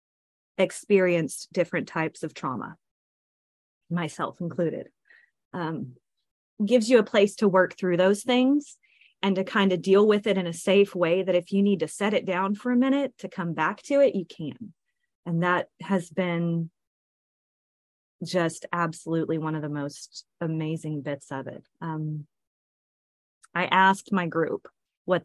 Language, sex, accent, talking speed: English, female, American, 155 wpm